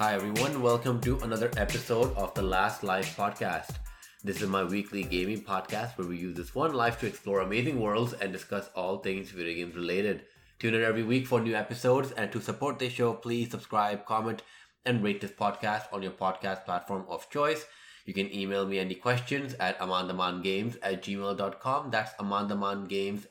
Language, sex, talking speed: English, male, 185 wpm